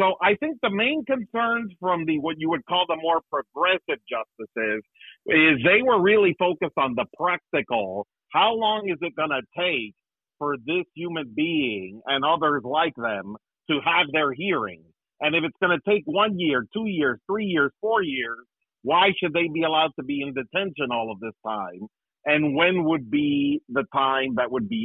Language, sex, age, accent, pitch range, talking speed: English, male, 50-69, American, 130-180 Hz, 190 wpm